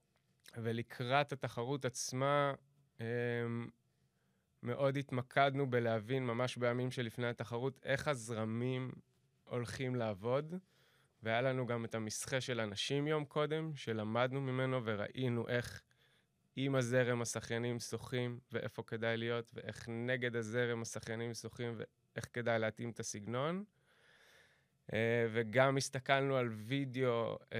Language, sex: Hebrew, male